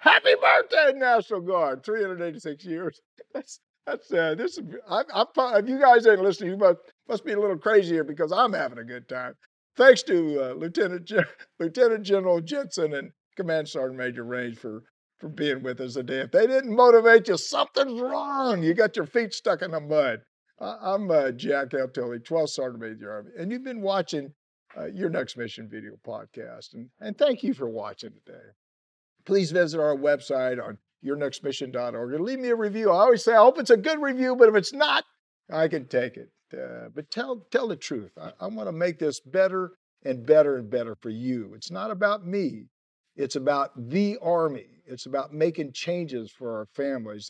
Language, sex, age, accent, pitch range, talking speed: English, male, 50-69, American, 130-210 Hz, 195 wpm